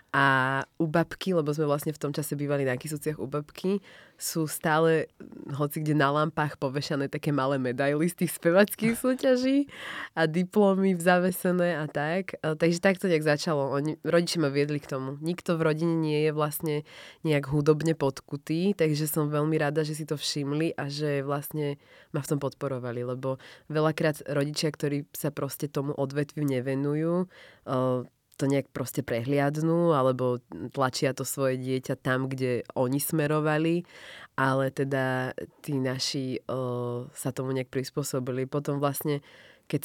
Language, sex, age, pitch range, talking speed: Slovak, female, 20-39, 135-155 Hz, 155 wpm